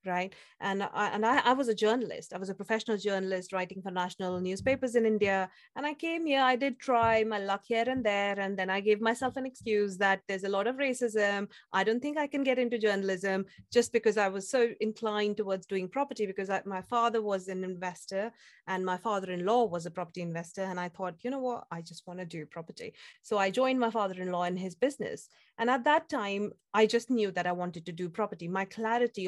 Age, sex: 30-49, female